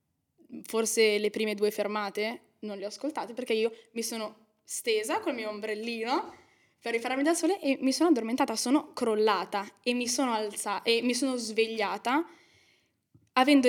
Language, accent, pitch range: Italian, native, 205-245 Hz